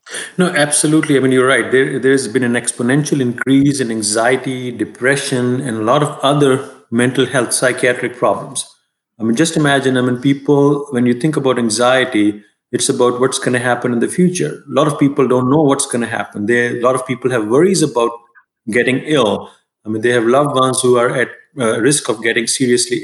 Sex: male